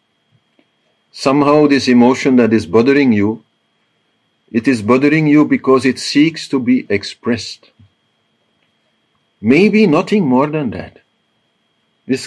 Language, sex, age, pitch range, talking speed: English, male, 50-69, 100-130 Hz, 110 wpm